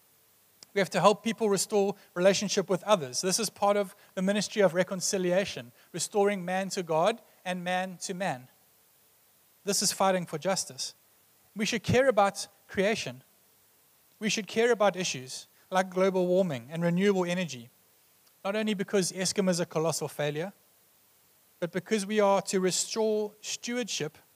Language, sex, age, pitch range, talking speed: English, male, 30-49, 170-205 Hz, 150 wpm